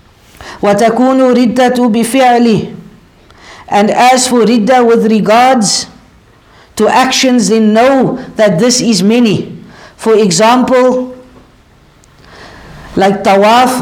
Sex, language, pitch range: female, English, 210-245 Hz